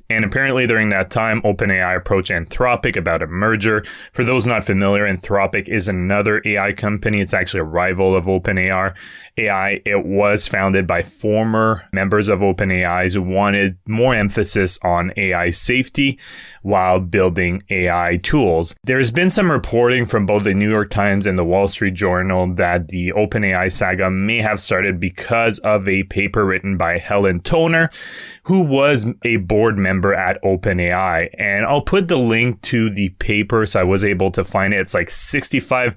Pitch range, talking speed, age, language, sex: 95-120 Hz, 170 wpm, 20-39, English, male